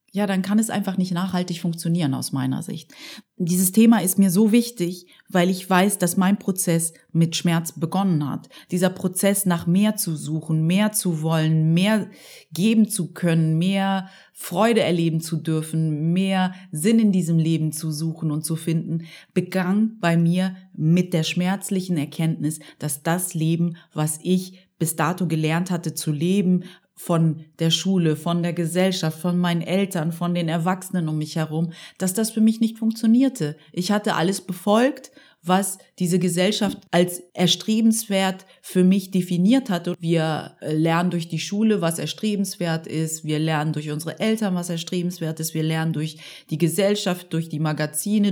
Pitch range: 165-195 Hz